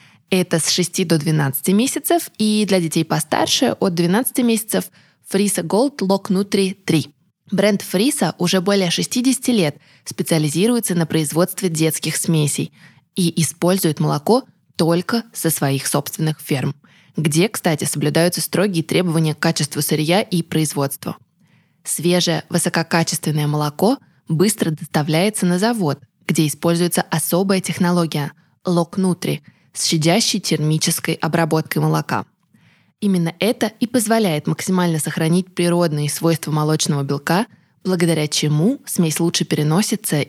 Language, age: Russian, 20-39